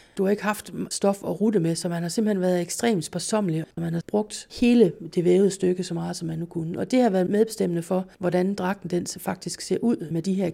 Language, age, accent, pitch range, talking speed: Danish, 30-49, native, 165-195 Hz, 245 wpm